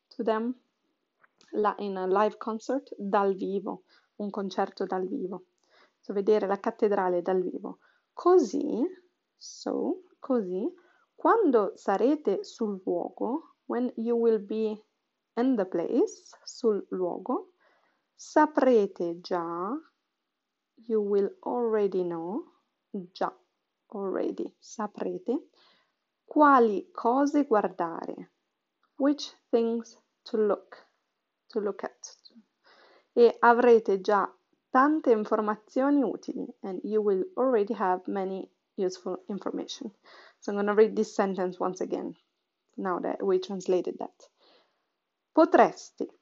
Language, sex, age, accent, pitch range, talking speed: Italian, female, 30-49, native, 200-290 Hz, 105 wpm